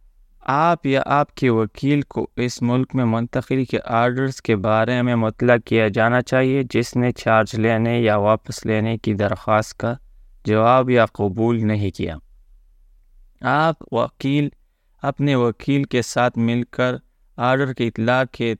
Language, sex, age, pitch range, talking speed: Urdu, male, 20-39, 110-130 Hz, 150 wpm